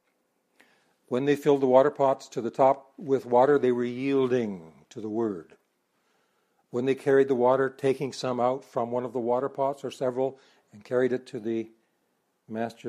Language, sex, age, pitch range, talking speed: English, male, 60-79, 115-135 Hz, 180 wpm